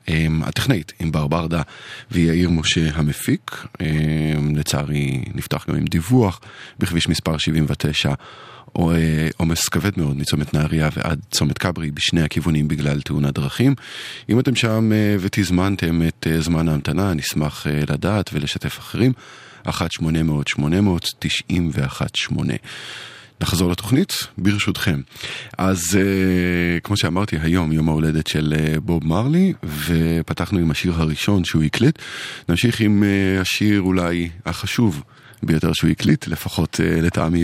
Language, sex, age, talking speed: Hebrew, male, 30-49, 110 wpm